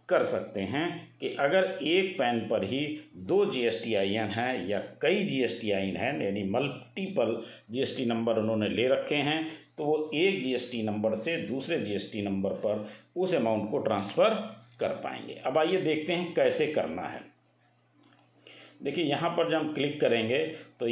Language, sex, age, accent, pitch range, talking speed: Hindi, male, 50-69, native, 110-160 Hz, 165 wpm